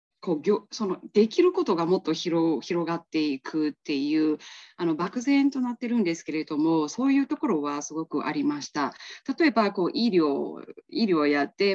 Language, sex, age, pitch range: Japanese, female, 20-39, 155-250 Hz